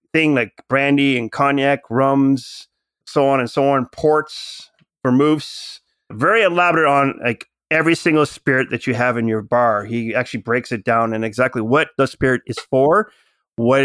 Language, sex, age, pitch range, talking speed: English, male, 30-49, 125-155 Hz, 170 wpm